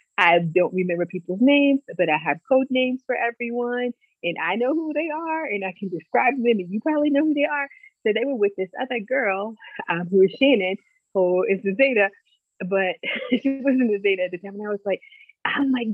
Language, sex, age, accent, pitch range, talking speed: English, female, 30-49, American, 170-250 Hz, 220 wpm